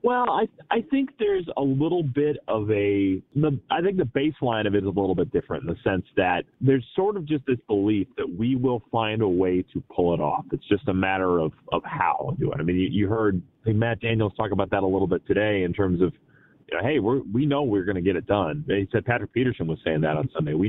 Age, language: 30-49, English